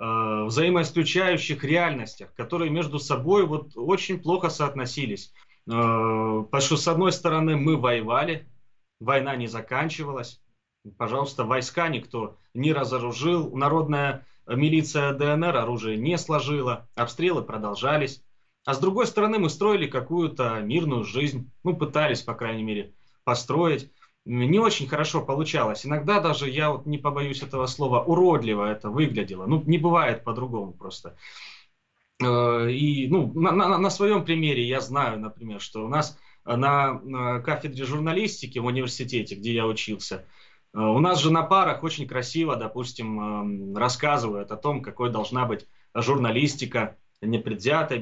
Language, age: Russian, 20-39